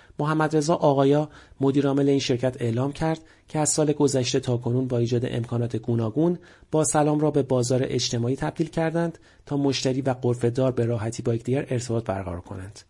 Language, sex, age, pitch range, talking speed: Persian, male, 40-59, 120-150 Hz, 165 wpm